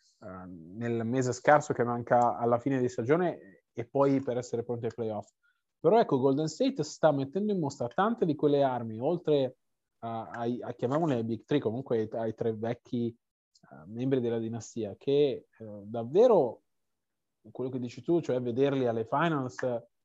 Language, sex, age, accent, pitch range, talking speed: Italian, male, 30-49, native, 120-145 Hz, 150 wpm